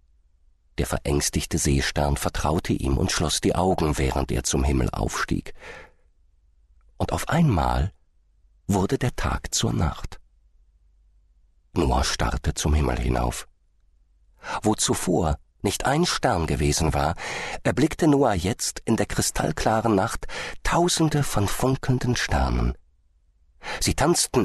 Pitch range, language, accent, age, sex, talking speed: 70-100 Hz, German, German, 50-69, male, 115 wpm